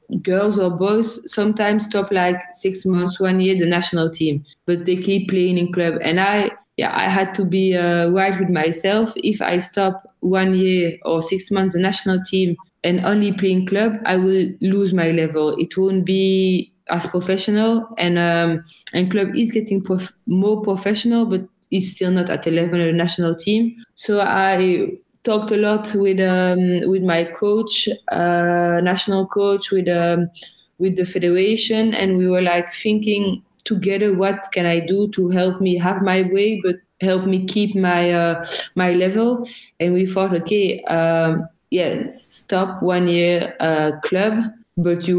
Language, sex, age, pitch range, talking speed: English, female, 20-39, 175-200 Hz, 175 wpm